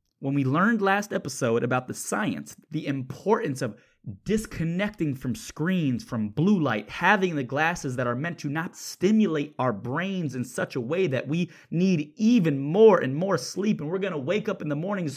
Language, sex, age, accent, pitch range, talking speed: English, male, 20-39, American, 110-150 Hz, 195 wpm